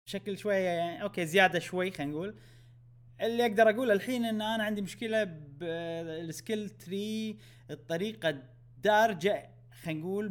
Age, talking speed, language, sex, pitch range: 20-39, 130 wpm, Arabic, male, 120-195 Hz